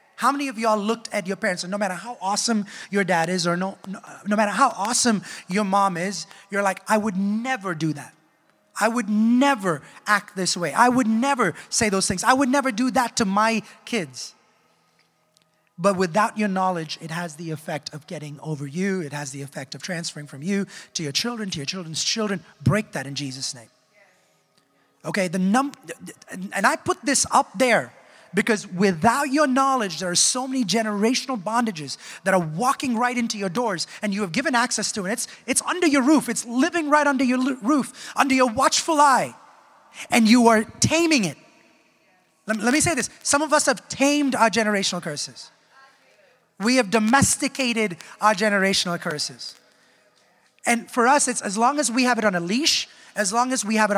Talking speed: 195 wpm